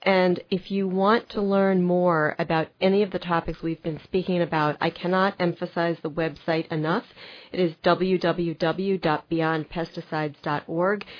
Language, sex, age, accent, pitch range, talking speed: English, female, 40-59, American, 165-195 Hz, 135 wpm